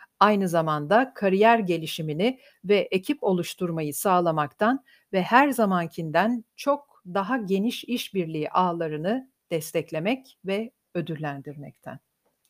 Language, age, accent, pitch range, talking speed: Turkish, 50-69, native, 170-225 Hz, 90 wpm